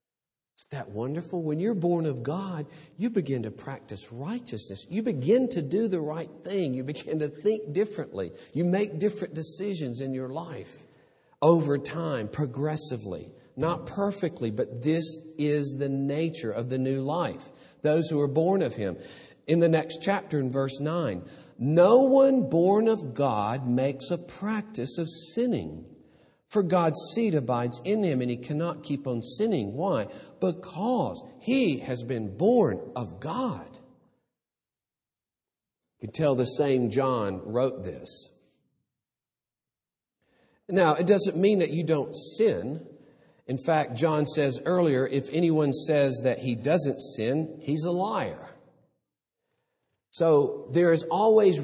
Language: English